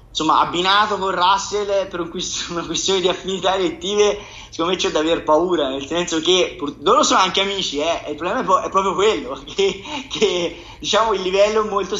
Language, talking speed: Italian, 190 wpm